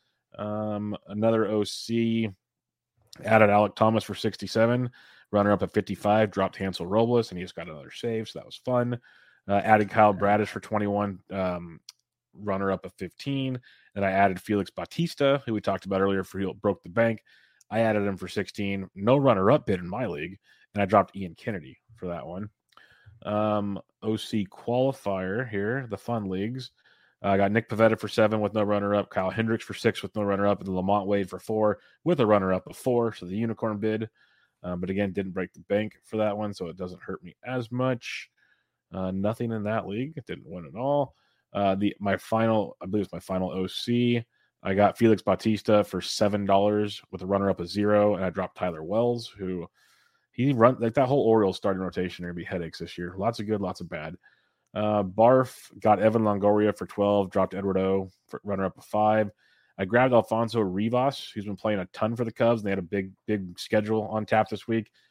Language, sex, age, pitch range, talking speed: English, male, 30-49, 95-110 Hz, 205 wpm